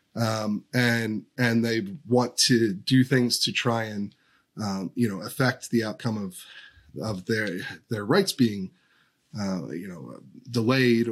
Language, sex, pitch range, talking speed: English, male, 105-125 Hz, 145 wpm